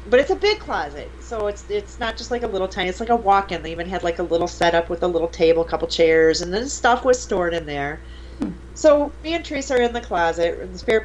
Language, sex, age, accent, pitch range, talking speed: English, female, 30-49, American, 165-225 Hz, 270 wpm